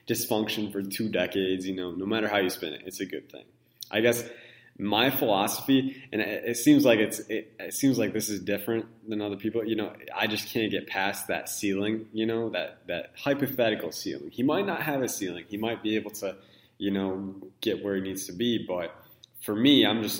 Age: 20-39